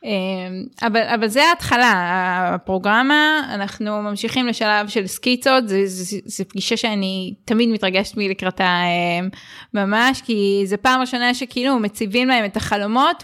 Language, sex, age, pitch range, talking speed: Hebrew, female, 20-39, 200-250 Hz, 120 wpm